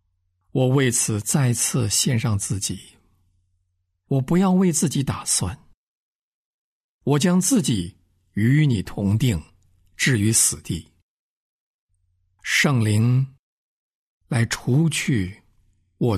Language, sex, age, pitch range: Chinese, male, 50-69, 90-130 Hz